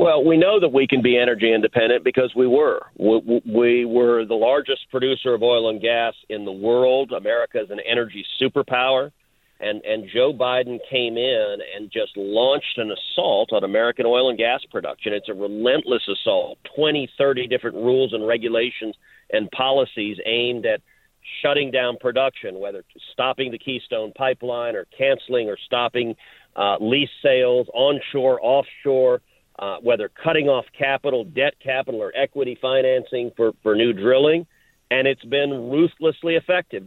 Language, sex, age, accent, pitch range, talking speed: English, male, 50-69, American, 120-155 Hz, 160 wpm